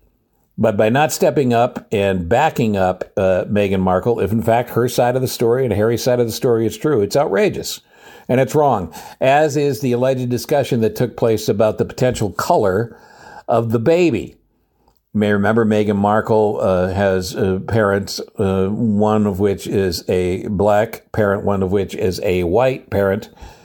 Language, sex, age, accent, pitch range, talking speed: English, male, 60-79, American, 100-145 Hz, 180 wpm